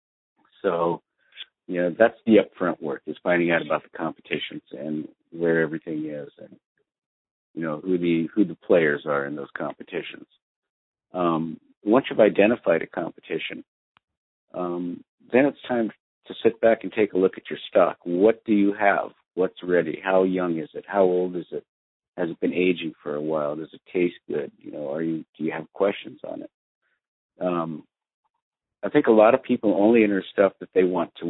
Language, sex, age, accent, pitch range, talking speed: English, male, 50-69, American, 80-100 Hz, 190 wpm